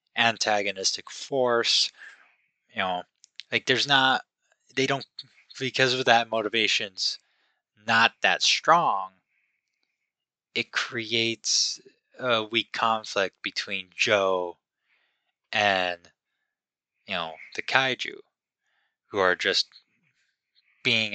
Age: 20-39